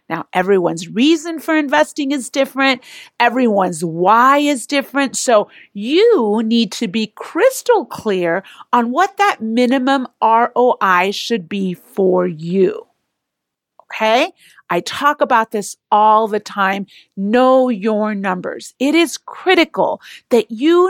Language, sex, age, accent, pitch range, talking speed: English, female, 40-59, American, 210-305 Hz, 125 wpm